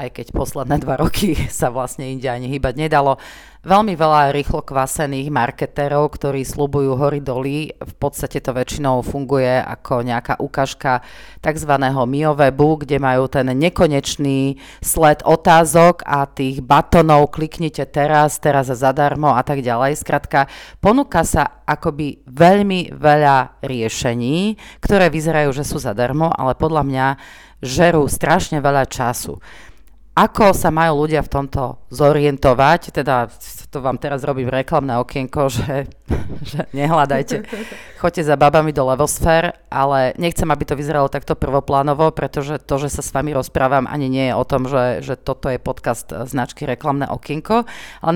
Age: 30-49